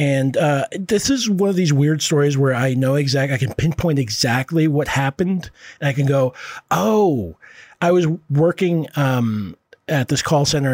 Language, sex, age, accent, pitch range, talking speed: English, male, 40-59, American, 120-155 Hz, 180 wpm